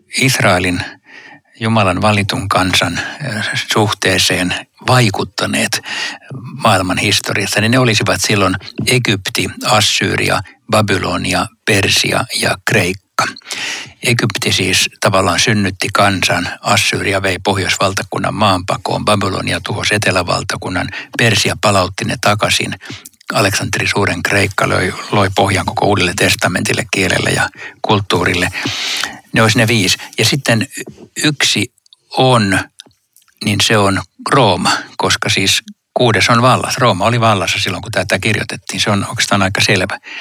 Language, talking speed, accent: Finnish, 110 wpm, native